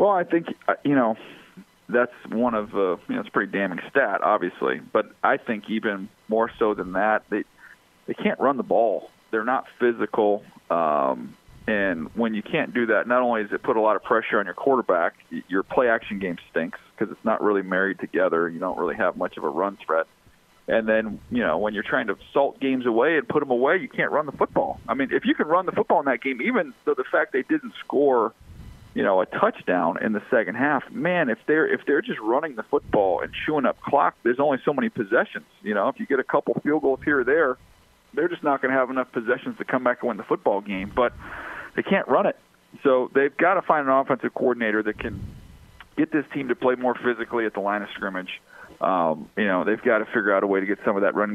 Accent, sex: American, male